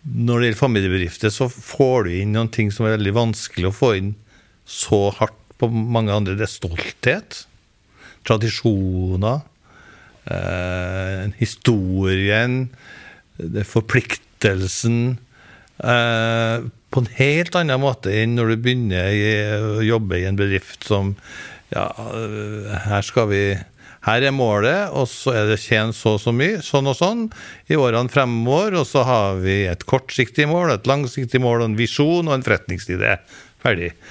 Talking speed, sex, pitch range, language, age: 150 wpm, male, 100-130 Hz, English, 60-79